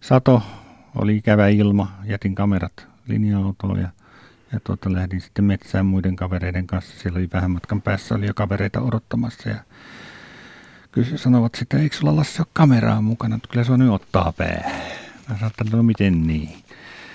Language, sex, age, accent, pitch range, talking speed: Finnish, male, 50-69, native, 85-110 Hz, 155 wpm